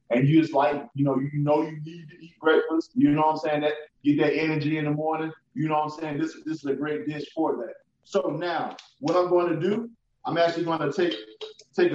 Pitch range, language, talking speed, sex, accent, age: 150-175 Hz, English, 250 wpm, male, American, 20-39